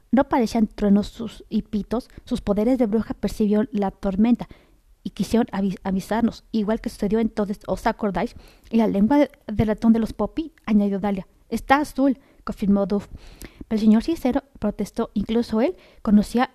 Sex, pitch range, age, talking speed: female, 205-240 Hz, 30-49, 165 wpm